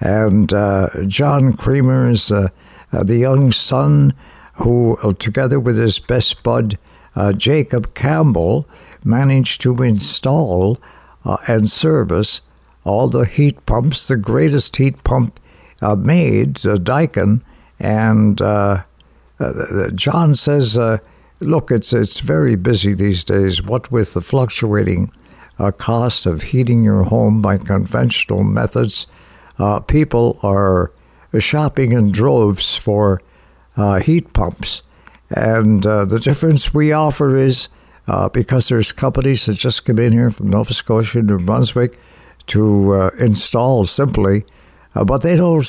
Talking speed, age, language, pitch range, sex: 135 wpm, 60-79, English, 100-130 Hz, male